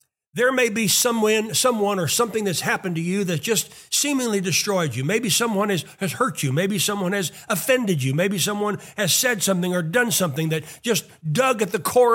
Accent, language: American, English